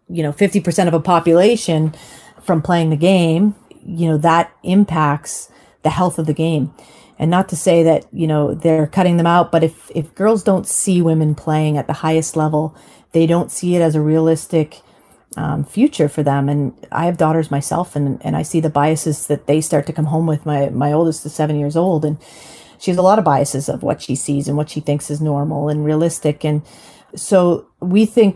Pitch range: 150-165 Hz